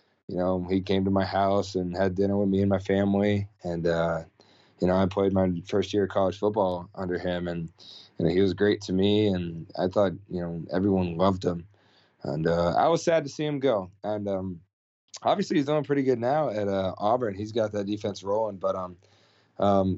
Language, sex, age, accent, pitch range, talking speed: English, male, 20-39, American, 90-105 Hz, 215 wpm